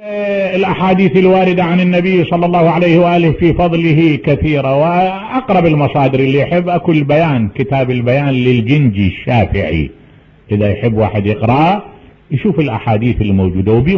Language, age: English, 50-69